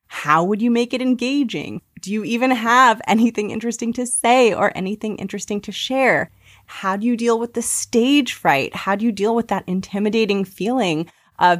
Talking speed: 185 wpm